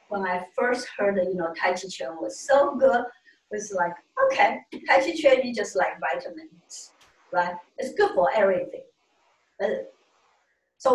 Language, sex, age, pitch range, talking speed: English, female, 50-69, 195-280 Hz, 170 wpm